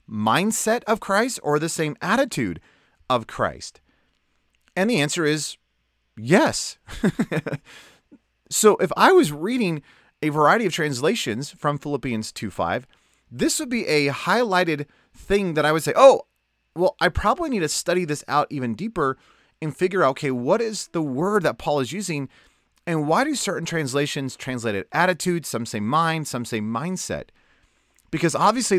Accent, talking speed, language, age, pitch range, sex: American, 155 wpm, English, 30-49, 125-175 Hz, male